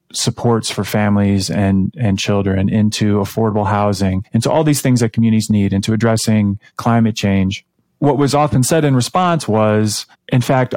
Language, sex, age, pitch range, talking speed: English, male, 30-49, 105-140 Hz, 160 wpm